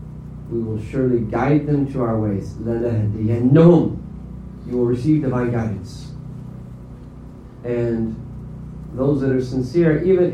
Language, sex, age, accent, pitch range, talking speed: English, male, 40-59, American, 120-160 Hz, 110 wpm